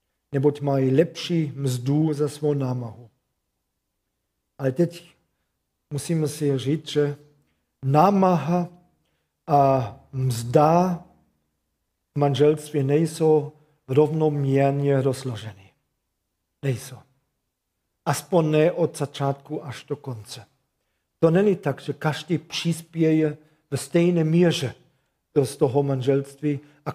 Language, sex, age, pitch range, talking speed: Czech, male, 50-69, 130-155 Hz, 95 wpm